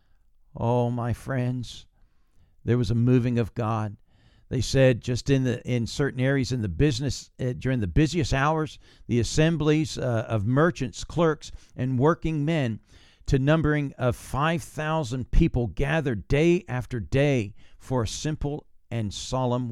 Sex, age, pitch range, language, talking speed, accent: male, 50-69, 105-135 Hz, English, 145 wpm, American